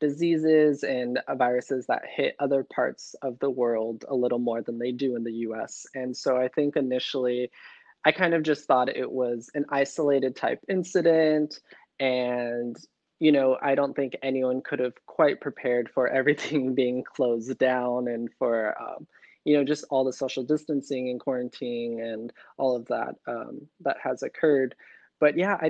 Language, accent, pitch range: English, American, 125-150 Hz